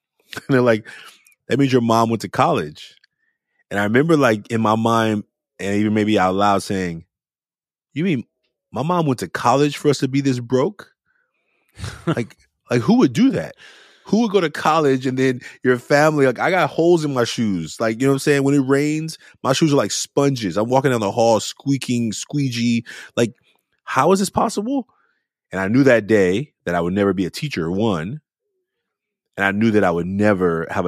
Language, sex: English, male